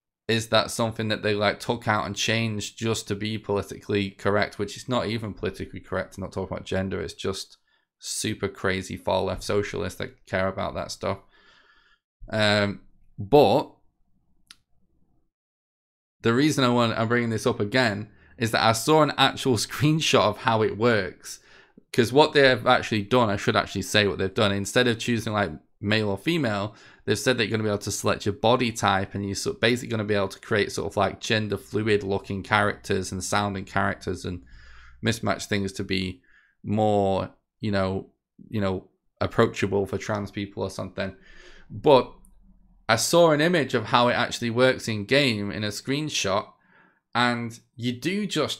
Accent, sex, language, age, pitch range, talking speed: British, male, English, 20-39, 100-120 Hz, 180 wpm